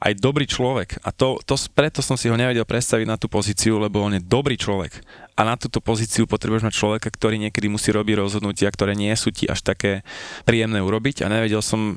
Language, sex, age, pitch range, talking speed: Slovak, male, 20-39, 100-110 Hz, 215 wpm